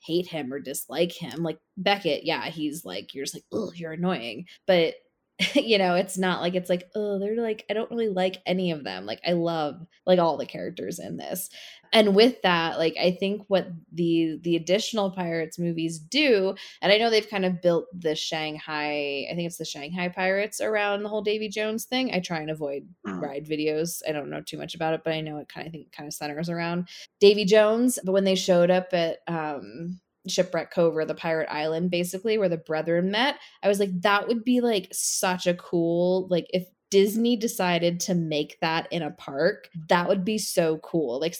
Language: English